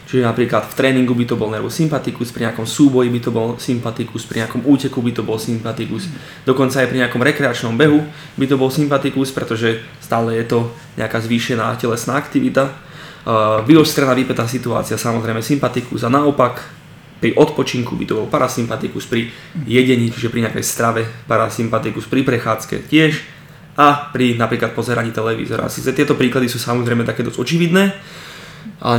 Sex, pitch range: male, 115-145 Hz